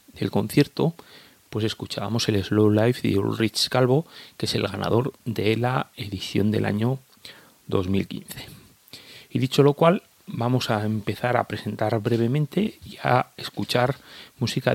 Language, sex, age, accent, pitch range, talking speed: Spanish, male, 30-49, Spanish, 105-130 Hz, 140 wpm